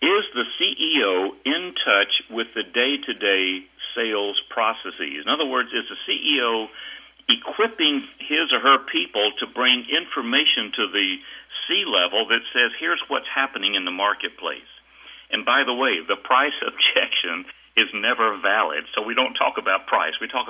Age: 60-79